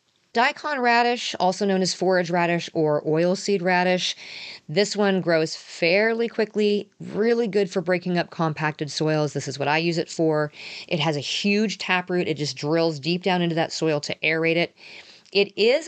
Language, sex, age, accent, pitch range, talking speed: English, female, 40-59, American, 155-190 Hz, 180 wpm